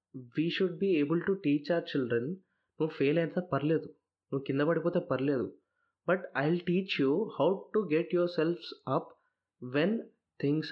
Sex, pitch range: male, 135-170 Hz